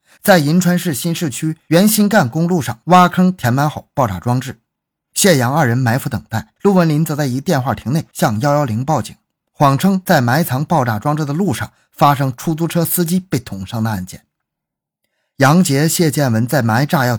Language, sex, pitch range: Chinese, male, 115-160 Hz